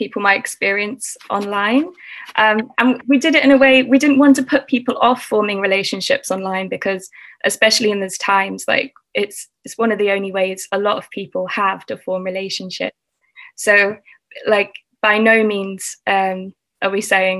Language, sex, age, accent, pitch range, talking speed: English, female, 20-39, British, 200-245 Hz, 180 wpm